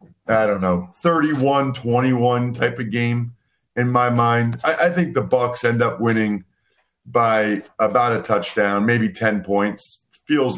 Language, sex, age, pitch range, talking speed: English, male, 40-59, 110-165 Hz, 145 wpm